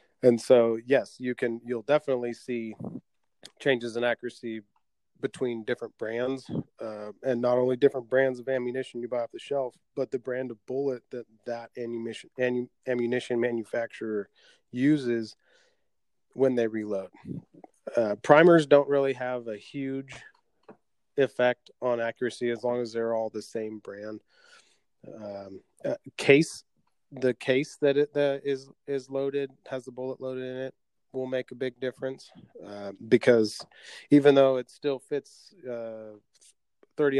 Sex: male